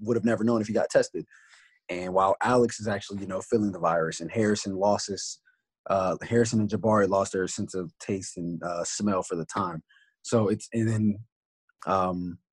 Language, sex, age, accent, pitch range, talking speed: English, male, 20-39, American, 95-110 Hz, 195 wpm